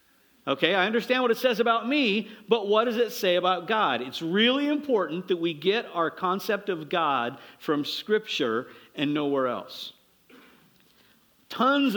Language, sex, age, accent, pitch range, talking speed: English, male, 50-69, American, 135-190 Hz, 155 wpm